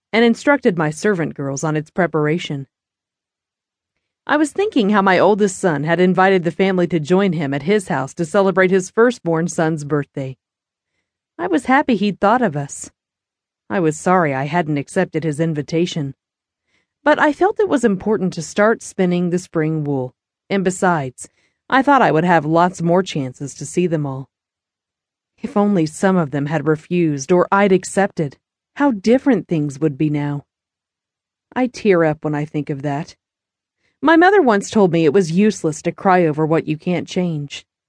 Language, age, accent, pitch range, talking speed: English, 40-59, American, 150-210 Hz, 175 wpm